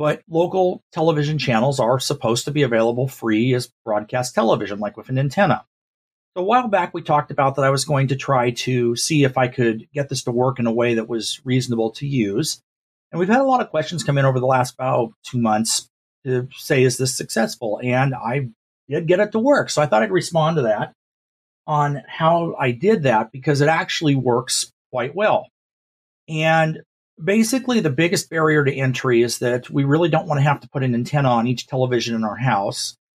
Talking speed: 210 wpm